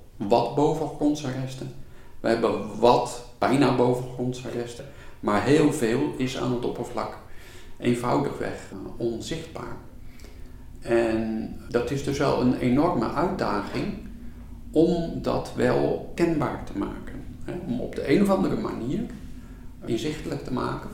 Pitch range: 105-135 Hz